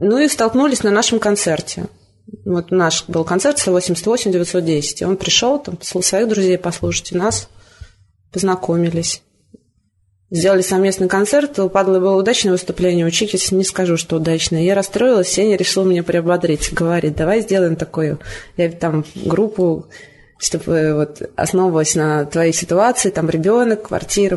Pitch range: 165-195 Hz